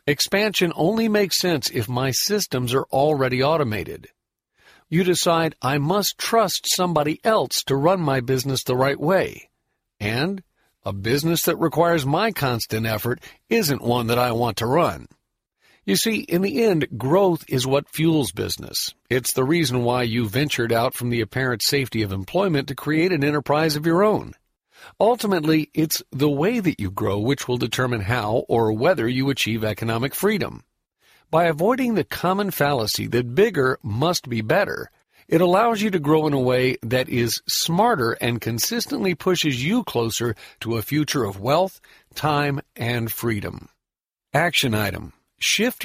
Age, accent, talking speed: 50-69, American, 160 wpm